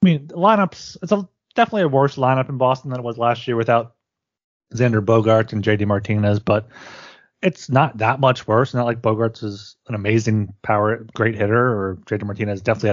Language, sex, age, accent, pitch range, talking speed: English, male, 30-49, American, 110-150 Hz, 190 wpm